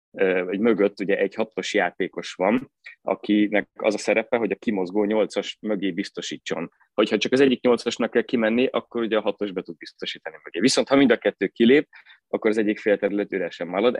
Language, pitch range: Hungarian, 95-110 Hz